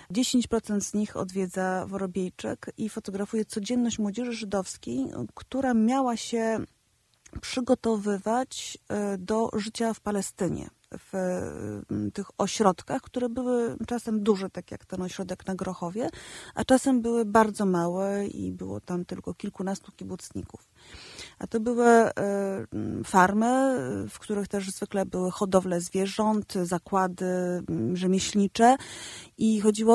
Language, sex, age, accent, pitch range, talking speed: Polish, female, 30-49, native, 190-230 Hz, 115 wpm